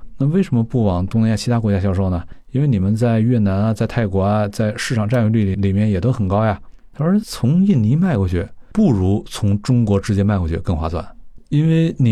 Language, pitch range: Chinese, 95-120 Hz